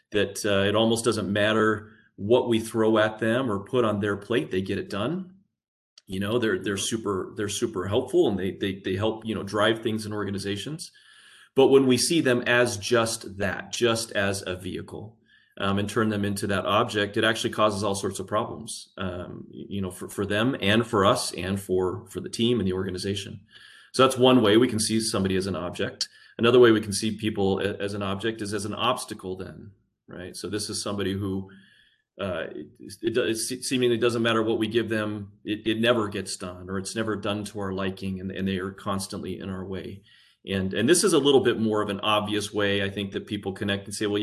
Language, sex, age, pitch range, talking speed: English, male, 30-49, 100-115 Hz, 225 wpm